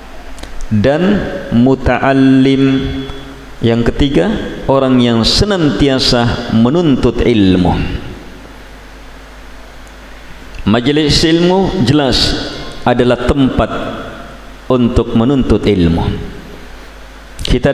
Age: 50-69